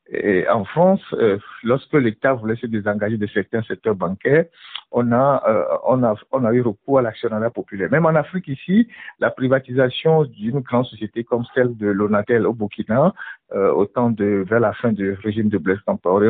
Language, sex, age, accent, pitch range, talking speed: French, male, 60-79, French, 115-170 Hz, 190 wpm